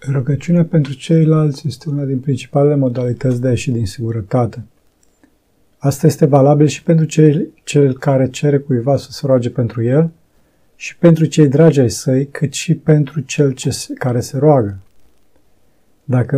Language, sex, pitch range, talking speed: Romanian, male, 125-150 Hz, 150 wpm